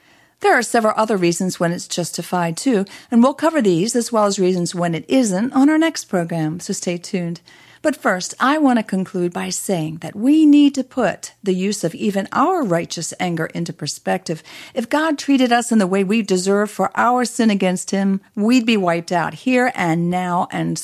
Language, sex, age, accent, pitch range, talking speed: English, female, 50-69, American, 175-230 Hz, 205 wpm